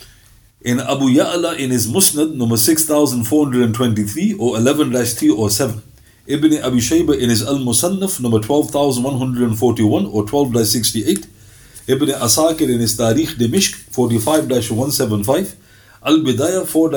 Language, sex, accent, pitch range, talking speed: English, male, Indian, 110-155 Hz, 105 wpm